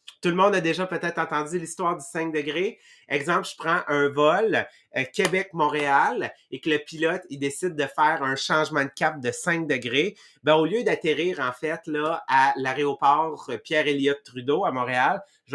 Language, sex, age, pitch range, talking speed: English, male, 30-49, 130-160 Hz, 180 wpm